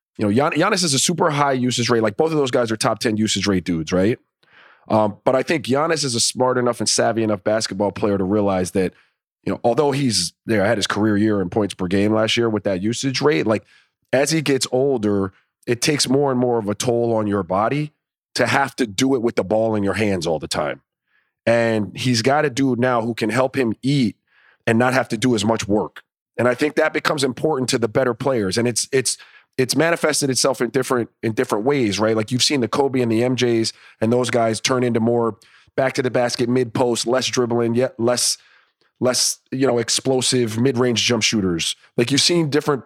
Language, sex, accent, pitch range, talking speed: English, male, American, 110-135 Hz, 230 wpm